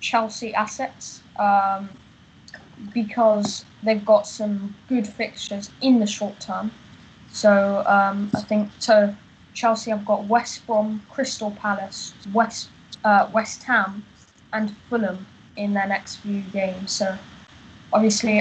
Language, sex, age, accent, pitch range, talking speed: English, female, 10-29, British, 200-215 Hz, 125 wpm